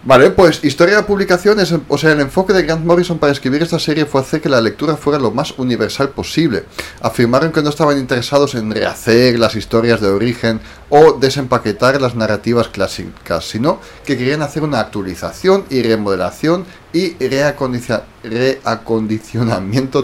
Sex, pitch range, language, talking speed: male, 110-150 Hz, Spanish, 155 wpm